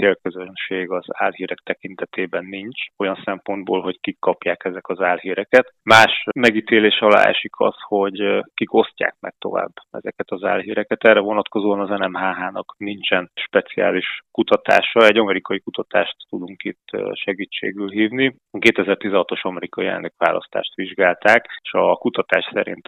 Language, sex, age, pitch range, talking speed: Hungarian, male, 20-39, 95-110 Hz, 125 wpm